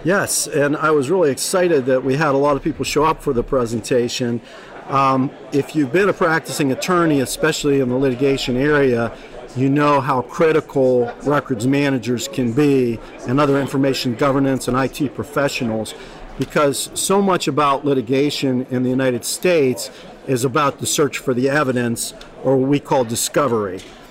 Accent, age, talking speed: American, 50-69, 165 wpm